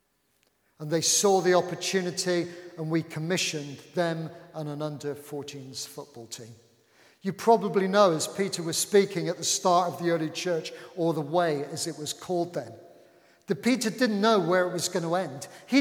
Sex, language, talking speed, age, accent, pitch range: male, English, 180 wpm, 40-59, British, 155-200 Hz